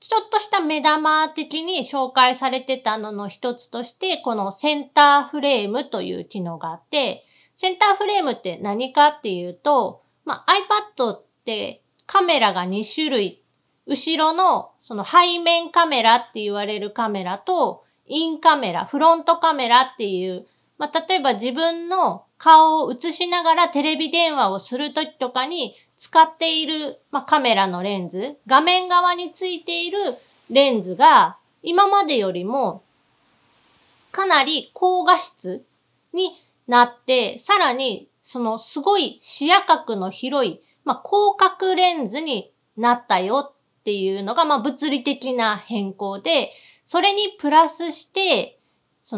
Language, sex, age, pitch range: Japanese, female, 30-49, 235-345 Hz